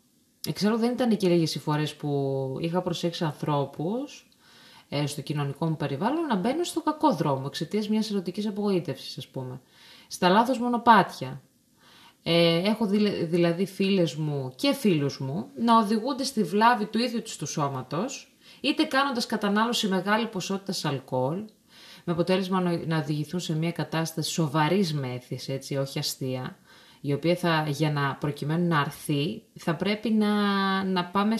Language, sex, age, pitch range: Greek, female, 20-39, 160-220 Hz